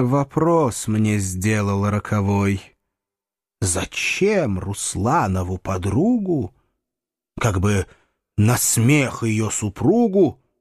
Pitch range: 100-140 Hz